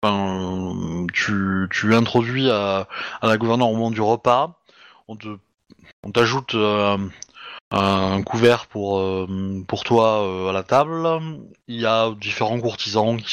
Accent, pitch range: French, 100-125 Hz